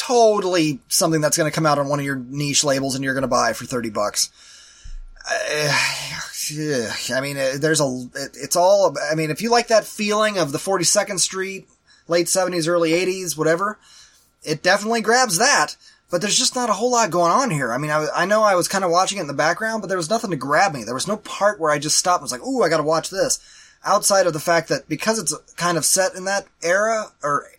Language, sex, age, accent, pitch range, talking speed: English, male, 20-39, American, 150-205 Hz, 240 wpm